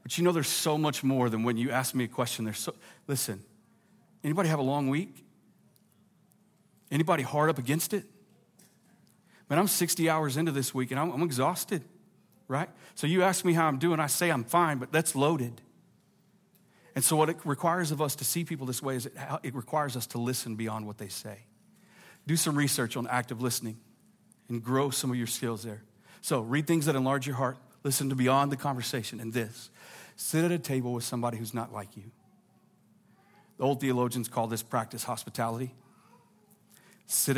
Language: English